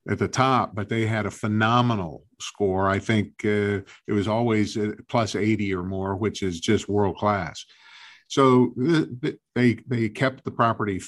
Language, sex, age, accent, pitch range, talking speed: English, male, 50-69, American, 100-120 Hz, 155 wpm